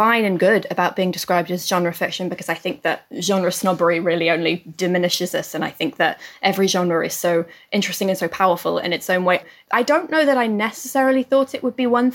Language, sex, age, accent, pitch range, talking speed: English, female, 20-39, British, 175-210 Hz, 225 wpm